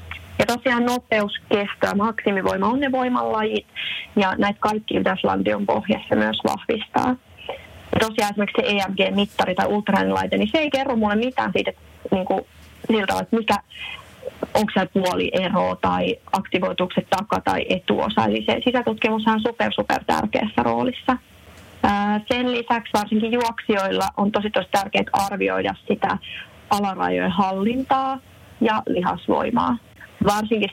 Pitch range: 185-220 Hz